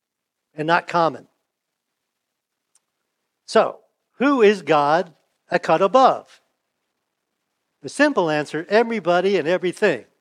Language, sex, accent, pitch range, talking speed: English, male, American, 150-200 Hz, 95 wpm